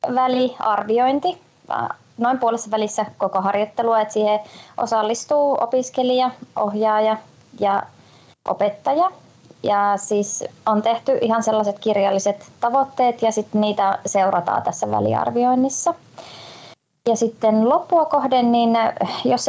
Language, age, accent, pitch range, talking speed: Finnish, 20-39, native, 200-240 Hz, 100 wpm